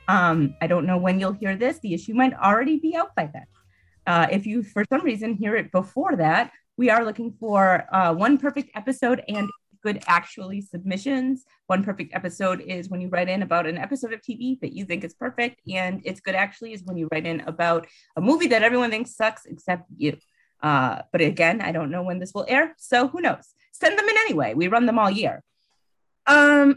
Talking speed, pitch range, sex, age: 215 wpm, 180-255 Hz, female, 30-49